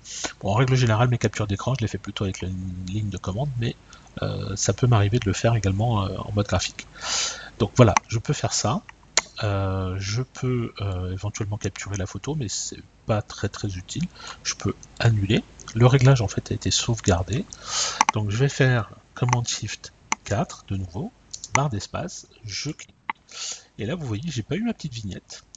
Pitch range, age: 100-125 Hz, 40-59